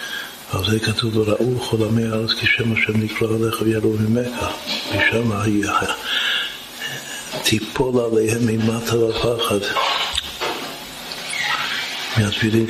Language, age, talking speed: Hebrew, 60-79, 100 wpm